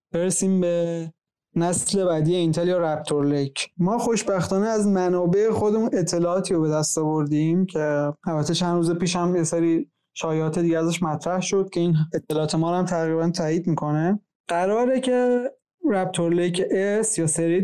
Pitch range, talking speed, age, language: 160-190 Hz, 155 wpm, 20-39, Persian